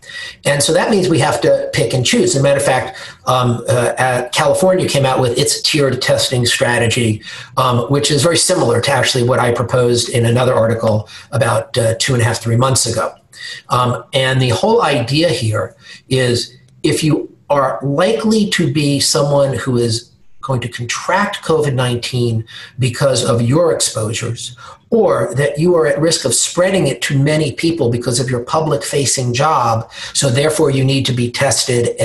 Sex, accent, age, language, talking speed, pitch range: male, American, 50-69, English, 180 wpm, 120-145 Hz